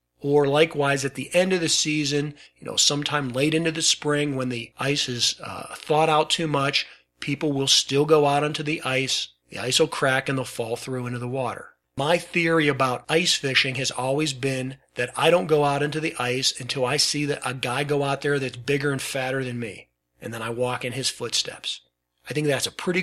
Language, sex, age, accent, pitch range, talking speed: English, male, 40-59, American, 130-155 Hz, 225 wpm